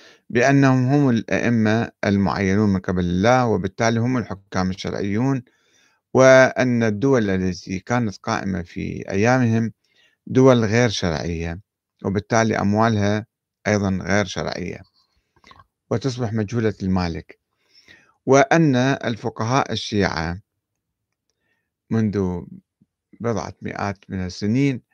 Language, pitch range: Arabic, 100-120 Hz